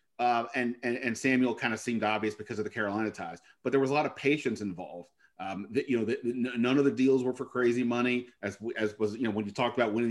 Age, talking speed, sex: 30-49, 275 wpm, male